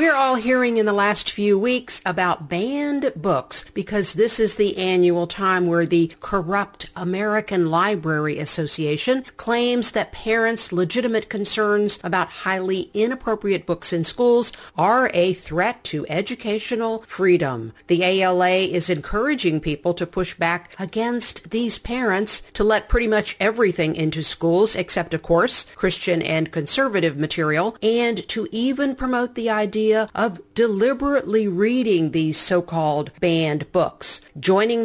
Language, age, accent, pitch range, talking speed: English, 50-69, American, 170-225 Hz, 135 wpm